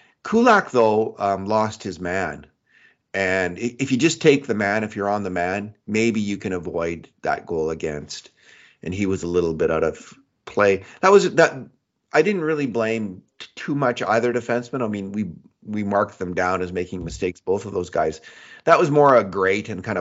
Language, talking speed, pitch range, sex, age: English, 200 wpm, 90-120 Hz, male, 30-49